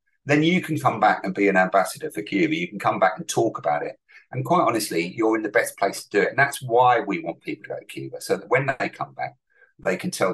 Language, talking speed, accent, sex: English, 285 wpm, British, male